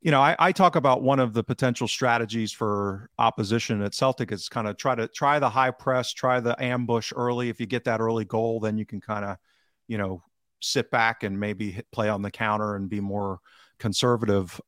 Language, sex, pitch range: English, male, 100-120 Hz